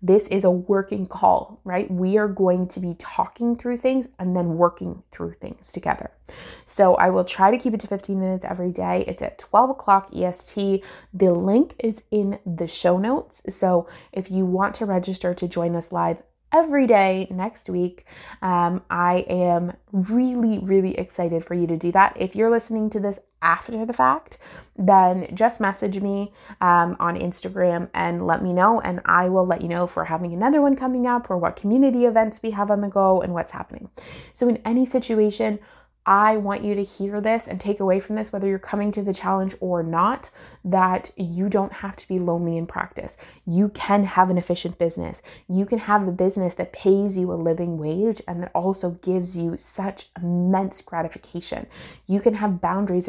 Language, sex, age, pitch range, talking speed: English, female, 20-39, 175-210 Hz, 195 wpm